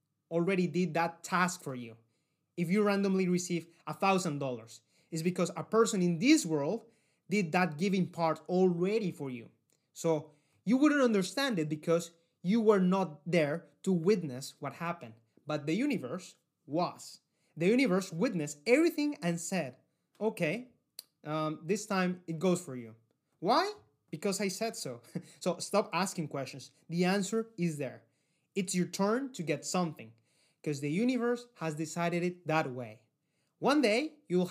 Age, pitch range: 30-49, 150-195 Hz